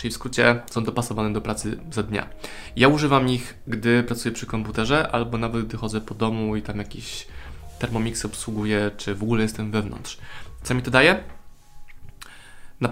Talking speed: 170 wpm